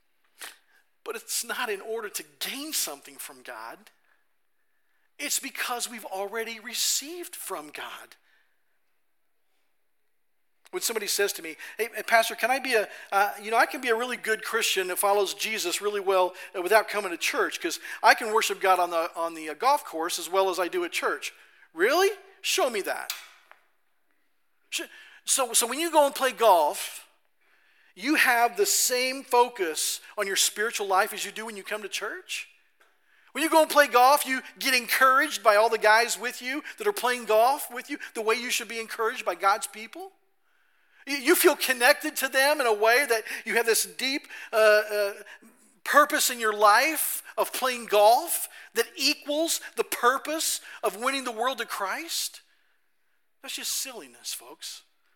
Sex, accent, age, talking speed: male, American, 50-69, 175 wpm